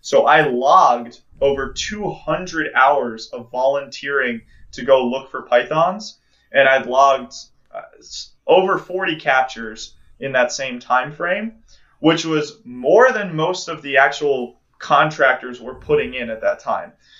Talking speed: 145 wpm